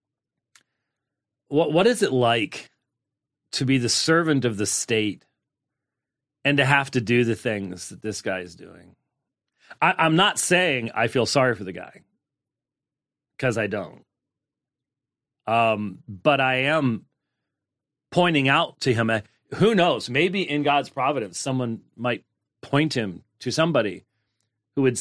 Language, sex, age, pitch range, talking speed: English, male, 40-59, 115-145 Hz, 140 wpm